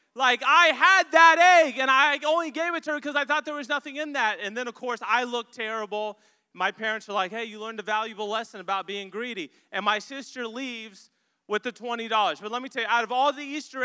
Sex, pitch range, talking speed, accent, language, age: male, 205-240 Hz, 245 wpm, American, English, 30-49